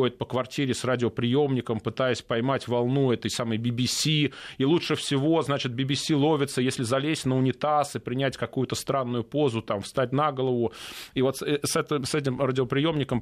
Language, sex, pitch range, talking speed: Russian, male, 120-165 Hz, 155 wpm